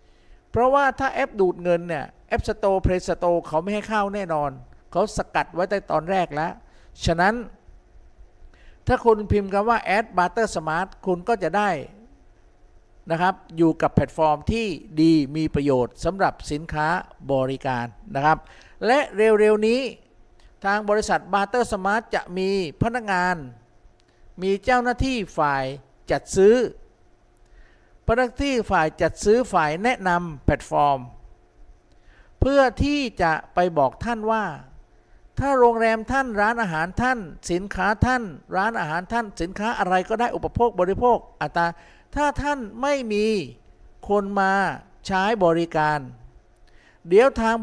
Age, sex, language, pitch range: 50-69, male, Thai, 155-215 Hz